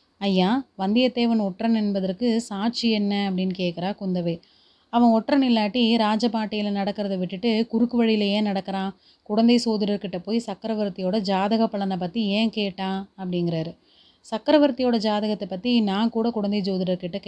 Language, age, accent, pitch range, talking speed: Tamil, 30-49, native, 185-225 Hz, 120 wpm